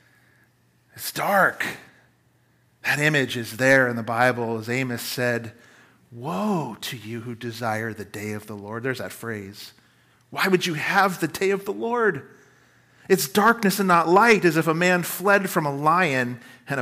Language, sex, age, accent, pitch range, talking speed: English, male, 40-59, American, 125-175 Hz, 170 wpm